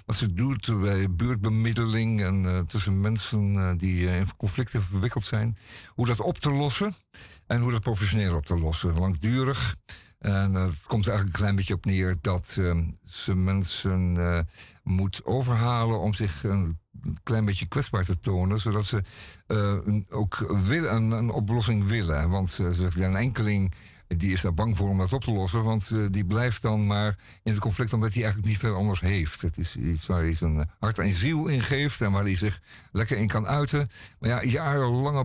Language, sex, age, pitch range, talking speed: Dutch, male, 50-69, 95-115 Hz, 200 wpm